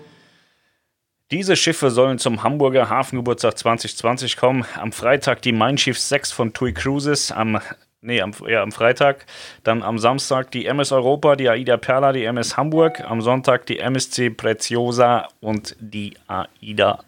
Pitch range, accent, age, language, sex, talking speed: 115-140 Hz, German, 30-49, German, male, 150 wpm